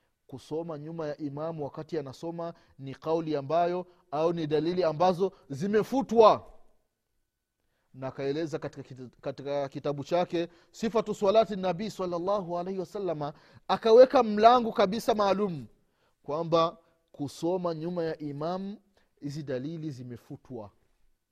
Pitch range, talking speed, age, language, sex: 145-210 Hz, 100 wpm, 30-49, Swahili, male